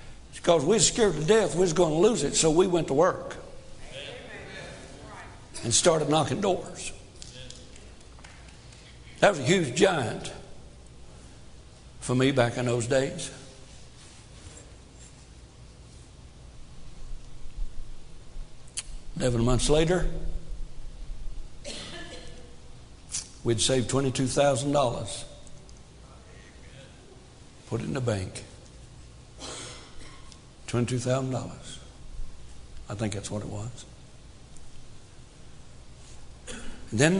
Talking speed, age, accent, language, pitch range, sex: 80 wpm, 60-79, American, English, 115-165 Hz, male